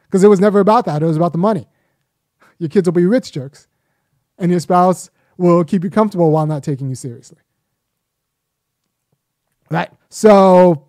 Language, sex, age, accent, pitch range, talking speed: English, male, 30-49, American, 150-180 Hz, 170 wpm